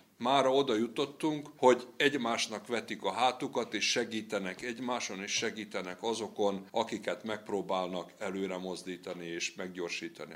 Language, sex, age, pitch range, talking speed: Hungarian, male, 60-79, 95-120 Hz, 115 wpm